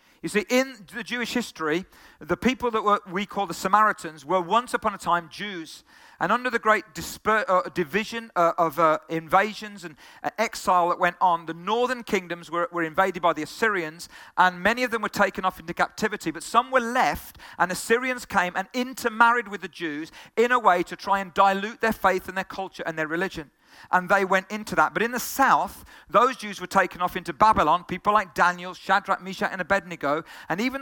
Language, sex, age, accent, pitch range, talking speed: English, male, 40-59, British, 180-225 Hz, 200 wpm